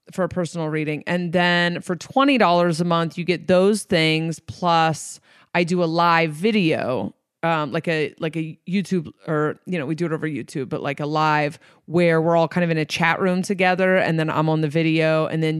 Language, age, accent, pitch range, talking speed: English, 30-49, American, 150-170 Hz, 215 wpm